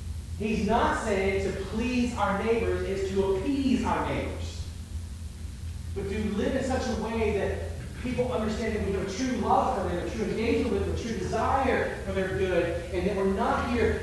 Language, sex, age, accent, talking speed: English, male, 30-49, American, 195 wpm